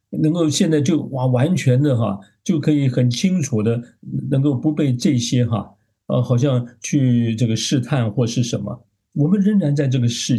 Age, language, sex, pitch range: 50-69, Chinese, male, 110-140 Hz